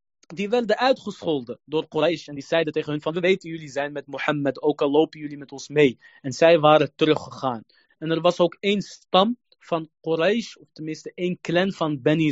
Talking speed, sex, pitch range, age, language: 205 wpm, male, 155-185 Hz, 20-39, Dutch